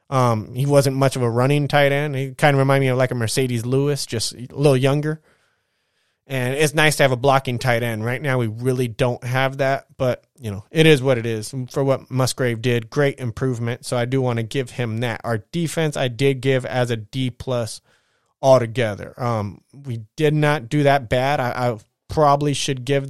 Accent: American